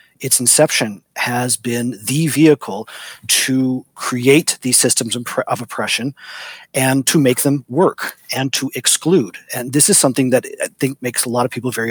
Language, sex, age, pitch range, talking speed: English, male, 40-59, 120-145 Hz, 165 wpm